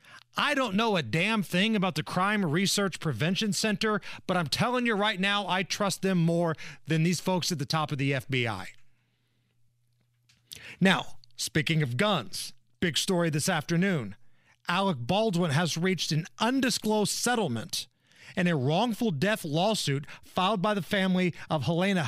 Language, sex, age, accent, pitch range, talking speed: English, male, 40-59, American, 140-195 Hz, 155 wpm